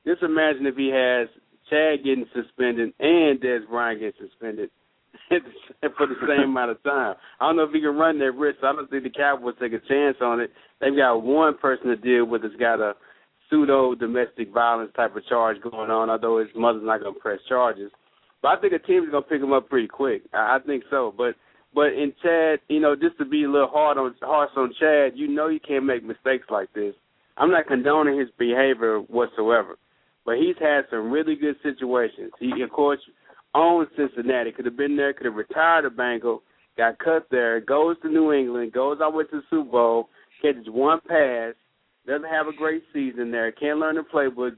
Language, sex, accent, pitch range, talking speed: English, male, American, 120-155 Hz, 210 wpm